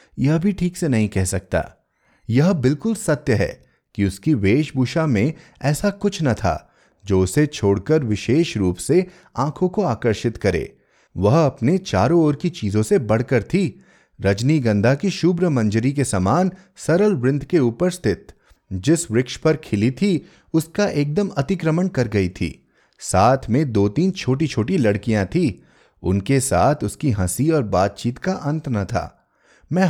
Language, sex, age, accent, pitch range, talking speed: Hindi, male, 30-49, native, 105-170 Hz, 160 wpm